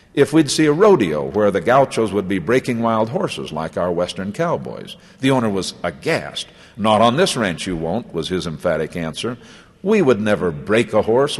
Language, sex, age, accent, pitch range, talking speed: English, male, 60-79, American, 100-165 Hz, 195 wpm